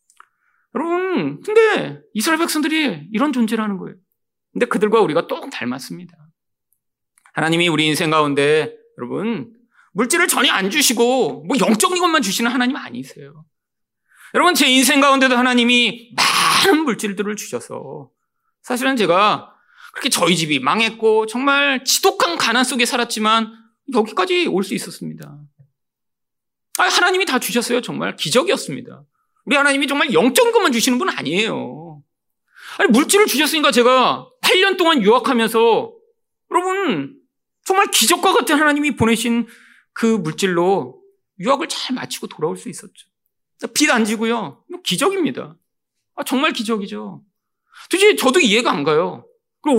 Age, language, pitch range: 40-59, Korean, 210-355 Hz